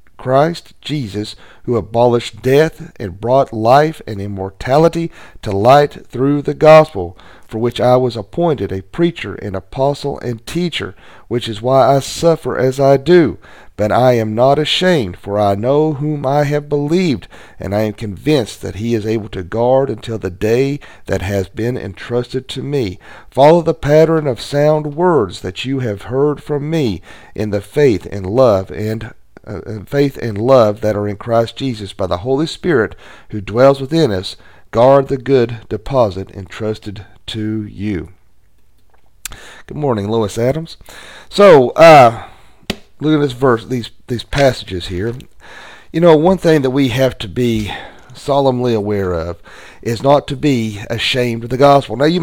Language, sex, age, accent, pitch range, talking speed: English, male, 40-59, American, 105-140 Hz, 165 wpm